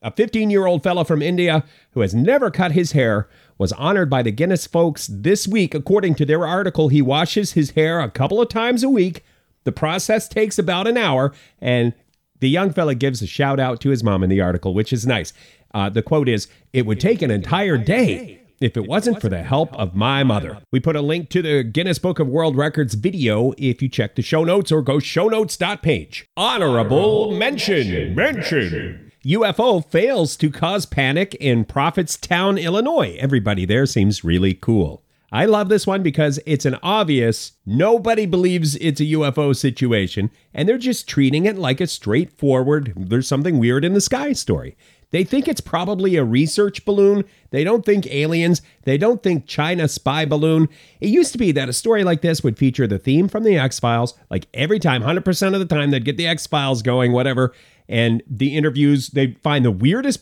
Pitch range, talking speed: 130-180 Hz, 195 wpm